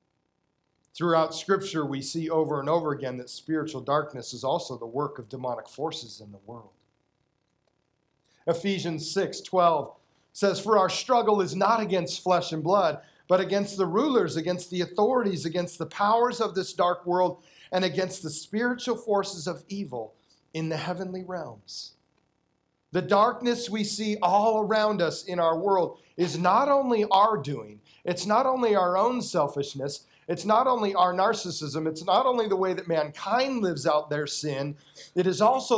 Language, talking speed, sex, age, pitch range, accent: English, 165 wpm, male, 40-59, 140-190 Hz, American